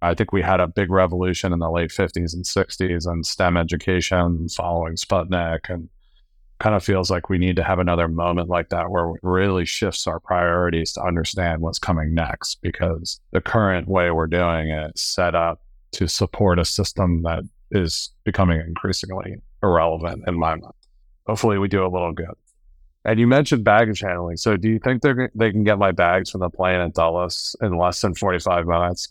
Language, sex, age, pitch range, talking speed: English, male, 30-49, 85-100 Hz, 200 wpm